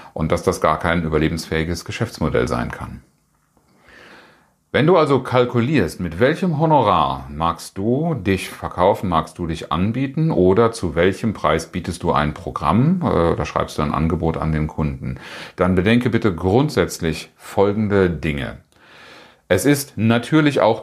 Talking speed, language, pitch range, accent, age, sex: 145 wpm, German, 80-115 Hz, German, 40-59, male